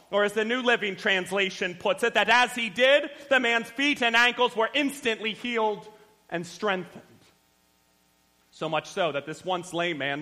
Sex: male